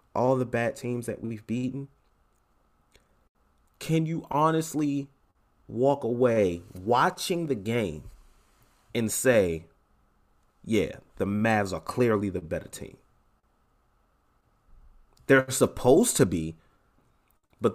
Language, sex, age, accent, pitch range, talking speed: English, male, 30-49, American, 85-120 Hz, 100 wpm